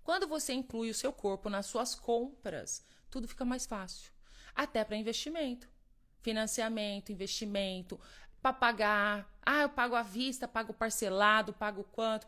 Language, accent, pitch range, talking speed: Portuguese, Brazilian, 200-245 Hz, 140 wpm